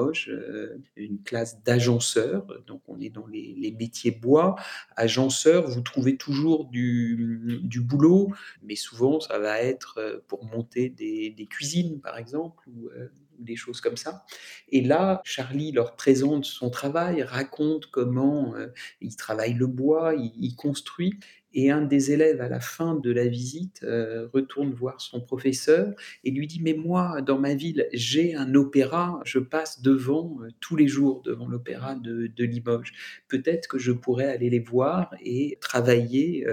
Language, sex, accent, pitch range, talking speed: French, male, French, 120-155 Hz, 165 wpm